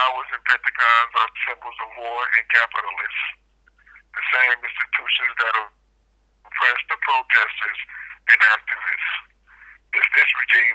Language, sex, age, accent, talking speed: English, male, 60-79, American, 115 wpm